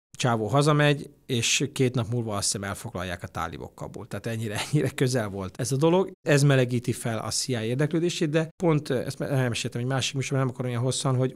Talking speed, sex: 205 wpm, male